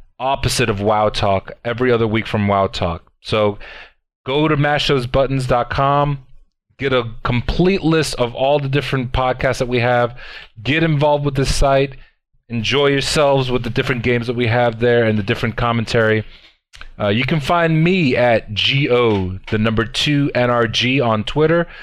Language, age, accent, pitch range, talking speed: English, 30-49, American, 110-135 Hz, 160 wpm